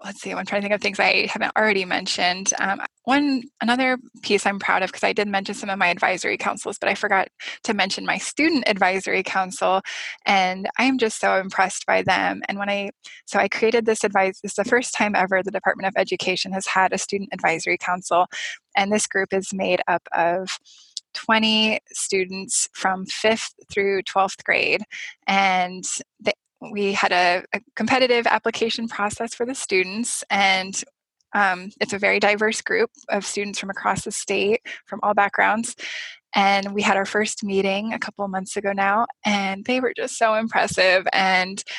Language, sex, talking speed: English, female, 185 wpm